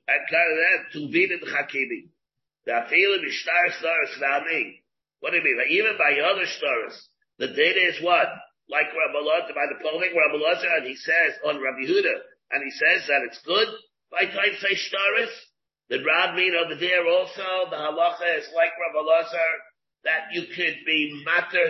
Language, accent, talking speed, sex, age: English, American, 155 wpm, male, 50-69